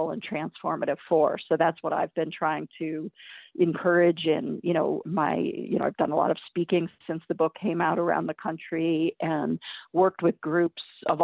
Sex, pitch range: female, 170-200 Hz